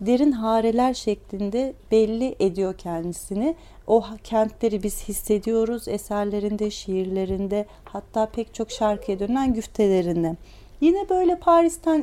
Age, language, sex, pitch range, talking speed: 40-59, Turkish, female, 200-285 Hz, 105 wpm